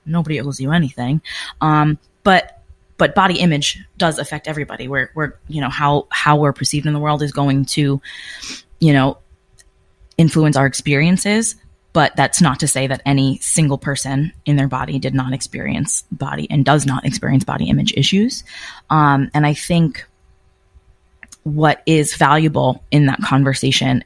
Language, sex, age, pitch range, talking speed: English, female, 20-39, 135-160 Hz, 160 wpm